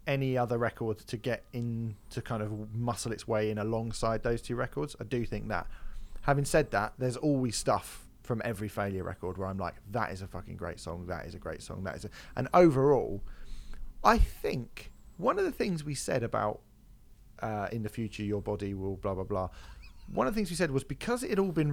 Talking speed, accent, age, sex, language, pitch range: 225 wpm, British, 30-49, male, English, 105-135 Hz